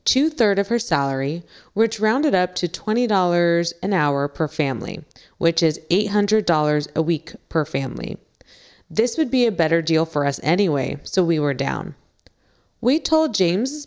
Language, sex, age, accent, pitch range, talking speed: English, female, 20-39, American, 160-215 Hz, 155 wpm